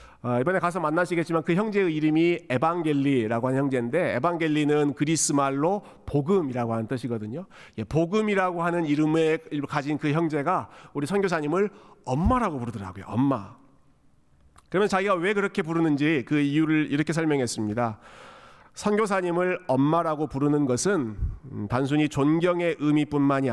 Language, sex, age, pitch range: Korean, male, 40-59, 125-175 Hz